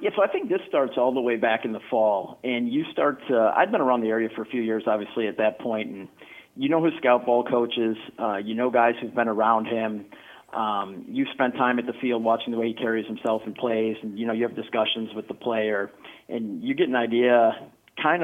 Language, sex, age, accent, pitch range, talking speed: English, male, 40-59, American, 110-125 Hz, 250 wpm